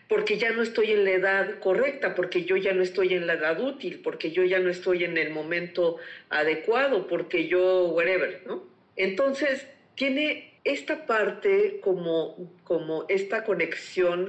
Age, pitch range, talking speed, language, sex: 50-69, 180-275 Hz, 160 wpm, Spanish, female